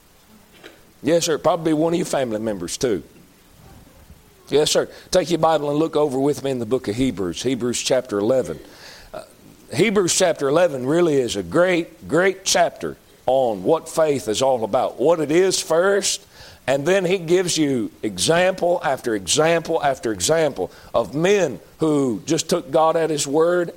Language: English